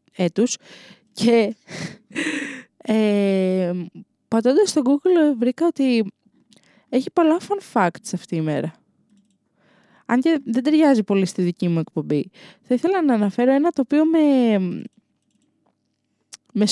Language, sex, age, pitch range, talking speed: Greek, female, 20-39, 210-275 Hz, 110 wpm